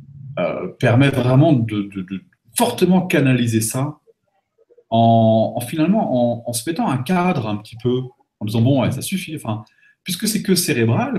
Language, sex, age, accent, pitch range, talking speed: French, male, 30-49, French, 115-180 Hz, 165 wpm